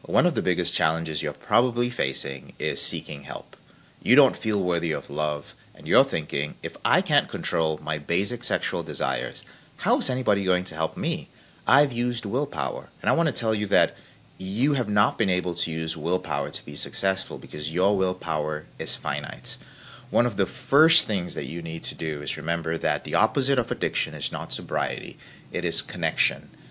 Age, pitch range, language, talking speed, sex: 30-49, 80-120 Hz, English, 190 wpm, male